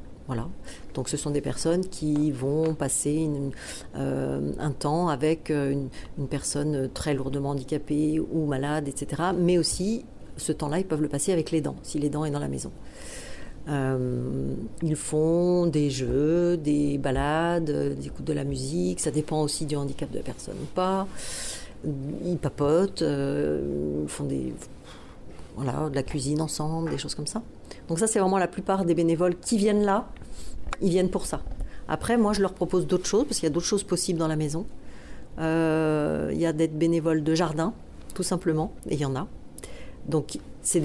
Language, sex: French, female